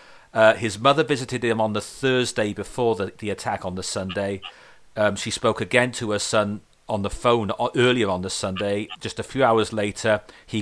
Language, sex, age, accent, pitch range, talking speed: English, male, 40-59, British, 100-115 Hz, 200 wpm